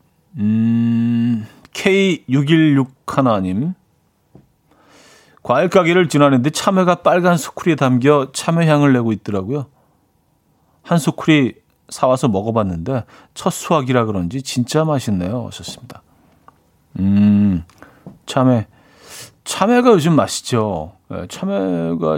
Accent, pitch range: native, 105-155 Hz